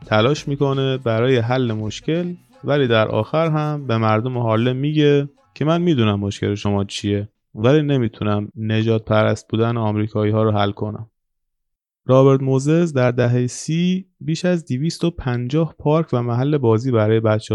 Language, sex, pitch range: Persian, male, 110-145 Hz